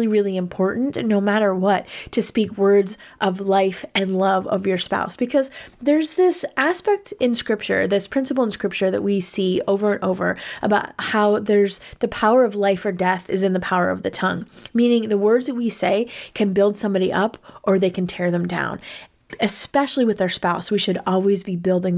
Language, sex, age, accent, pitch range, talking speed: English, female, 20-39, American, 195-240 Hz, 195 wpm